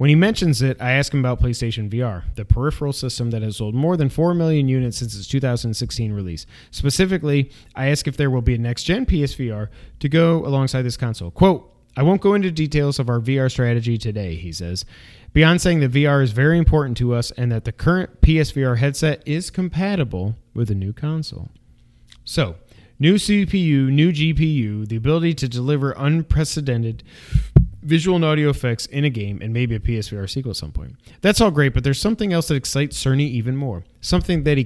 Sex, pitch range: male, 110-145 Hz